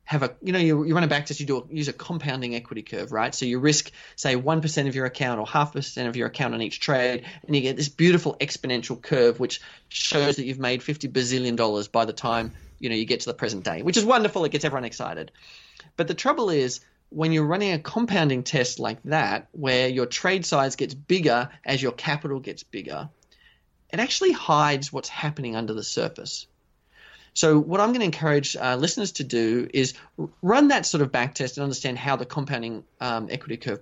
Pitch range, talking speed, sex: 125-155 Hz, 225 wpm, male